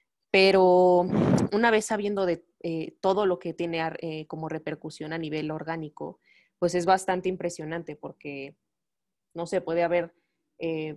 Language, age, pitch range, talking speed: Spanish, 20-39, 155-175 Hz, 140 wpm